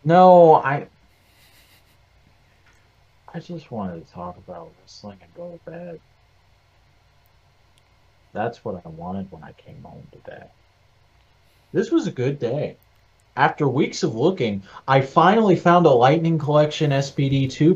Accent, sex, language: American, male, English